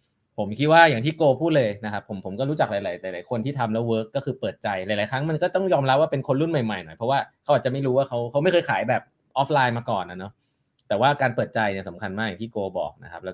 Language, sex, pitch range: Thai, male, 115-150 Hz